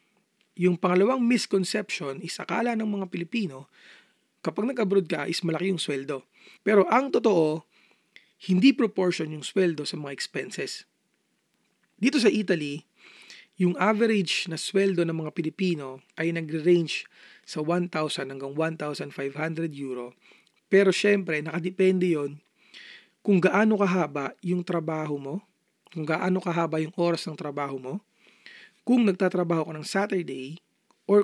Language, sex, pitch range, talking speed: Filipino, male, 155-200 Hz, 130 wpm